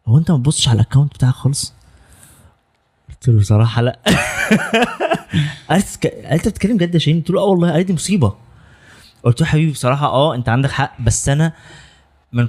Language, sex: Arabic, male